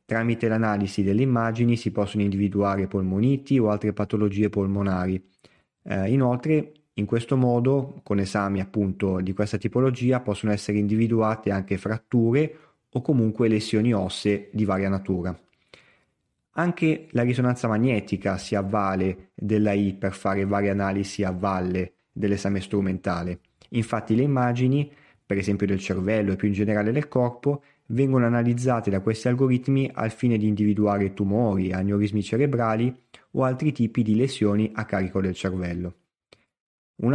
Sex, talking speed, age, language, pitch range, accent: male, 140 wpm, 30-49, Italian, 100-120 Hz, native